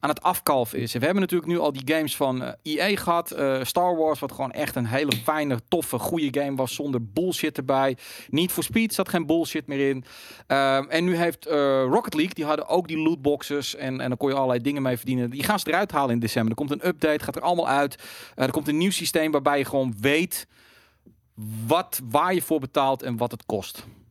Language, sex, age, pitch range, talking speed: Dutch, male, 40-59, 125-160 Hz, 235 wpm